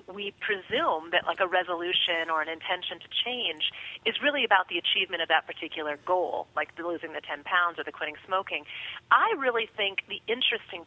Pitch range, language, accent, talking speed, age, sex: 170-230 Hz, English, American, 190 wpm, 30-49, female